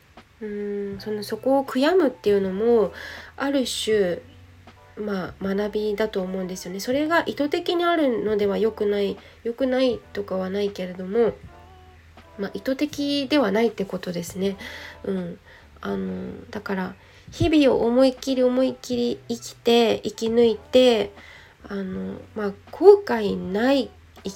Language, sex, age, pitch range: Japanese, female, 20-39, 190-270 Hz